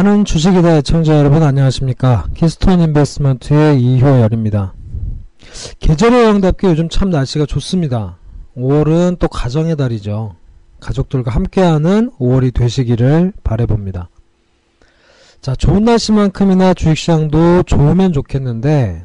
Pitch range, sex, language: 125-180 Hz, male, Korean